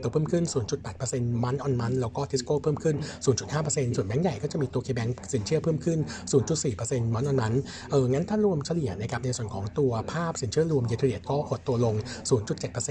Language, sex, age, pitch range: Thai, male, 60-79, 120-150 Hz